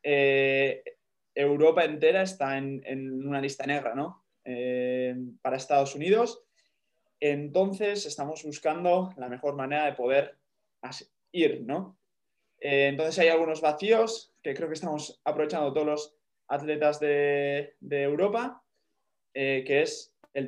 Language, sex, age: Spanish, male, 20-39